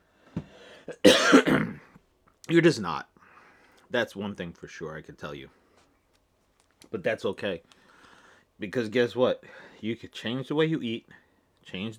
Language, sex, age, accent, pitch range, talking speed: English, male, 30-49, American, 95-130 Hz, 130 wpm